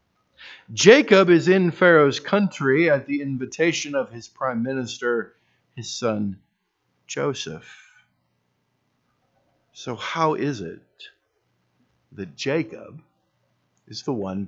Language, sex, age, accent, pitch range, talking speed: English, male, 50-69, American, 100-155 Hz, 100 wpm